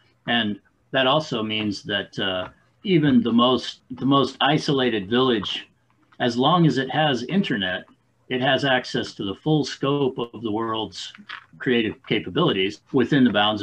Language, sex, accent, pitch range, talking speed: English, male, American, 100-130 Hz, 150 wpm